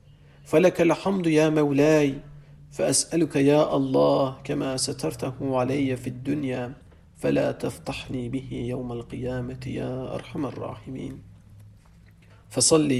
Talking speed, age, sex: 95 wpm, 50-69, male